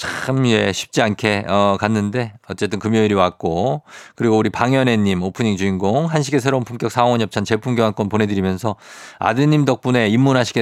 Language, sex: Korean, male